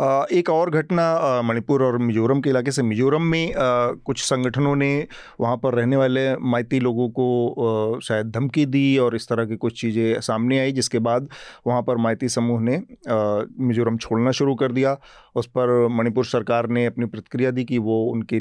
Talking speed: 180 wpm